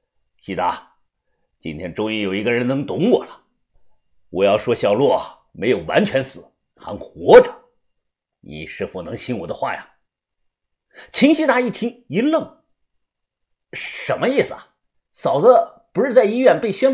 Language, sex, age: Chinese, male, 50-69